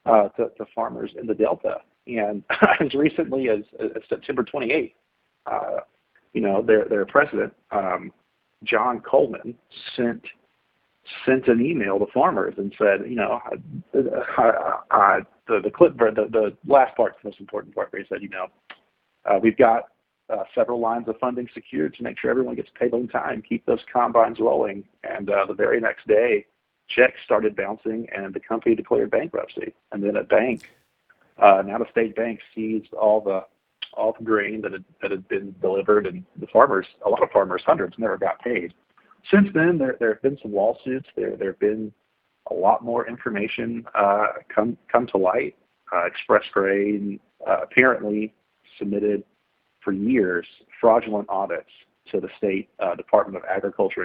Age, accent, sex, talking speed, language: 40-59, American, male, 175 wpm, English